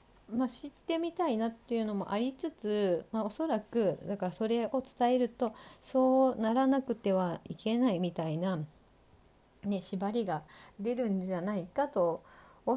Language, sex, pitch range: Japanese, female, 175-240 Hz